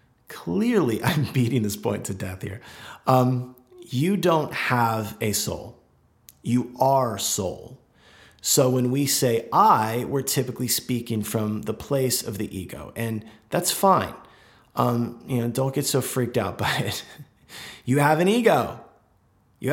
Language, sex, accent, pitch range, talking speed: English, male, American, 110-135 Hz, 150 wpm